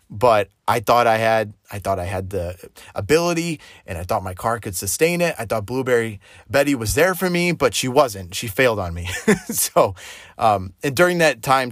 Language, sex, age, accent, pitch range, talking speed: English, male, 30-49, American, 100-135 Hz, 205 wpm